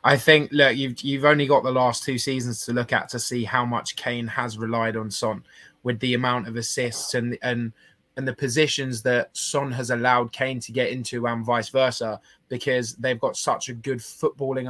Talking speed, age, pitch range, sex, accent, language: 210 wpm, 20-39, 120-140 Hz, male, British, English